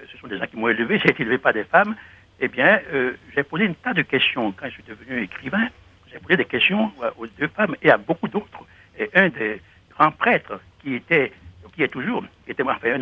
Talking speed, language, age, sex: 235 wpm, French, 60-79, male